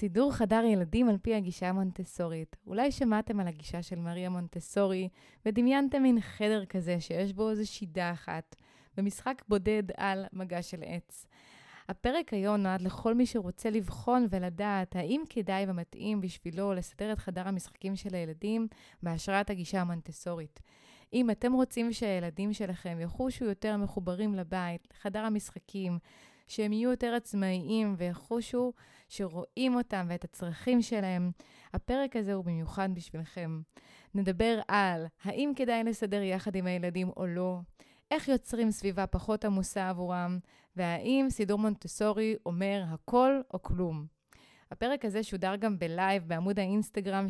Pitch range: 180-220 Hz